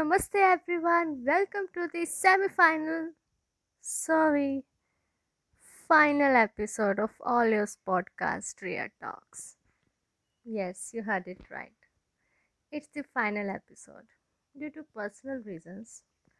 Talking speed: 105 wpm